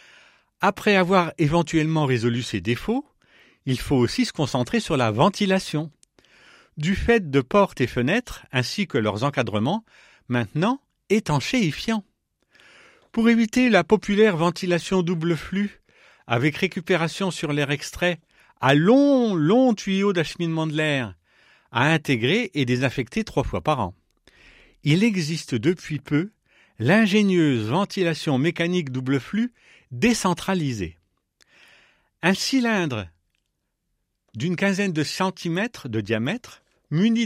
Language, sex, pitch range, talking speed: French, male, 135-205 Hz, 115 wpm